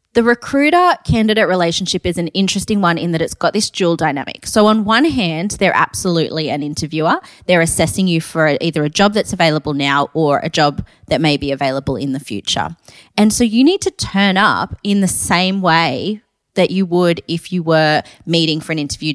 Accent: Australian